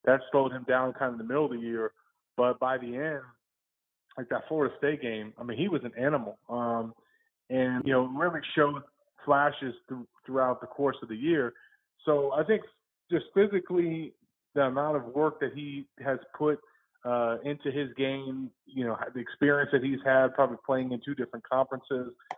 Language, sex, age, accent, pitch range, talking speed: English, male, 30-49, American, 130-150 Hz, 190 wpm